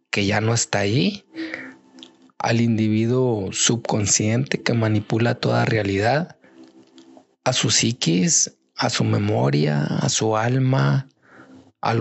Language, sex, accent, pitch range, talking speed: Spanish, male, Mexican, 105-135 Hz, 110 wpm